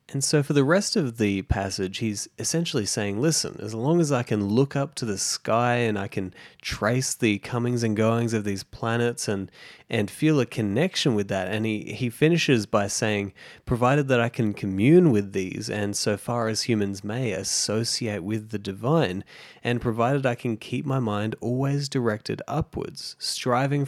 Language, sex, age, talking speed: English, male, 20-39, 185 wpm